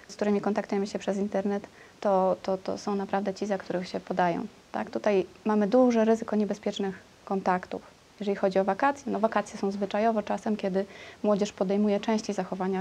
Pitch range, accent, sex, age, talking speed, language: 195-220 Hz, native, female, 20-39, 175 wpm, Polish